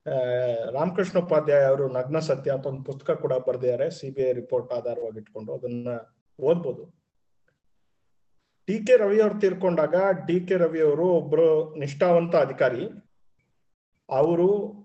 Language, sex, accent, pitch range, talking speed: Kannada, male, native, 135-185 Hz, 115 wpm